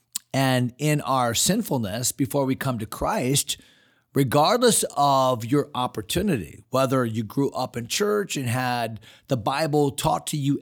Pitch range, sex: 120-160 Hz, male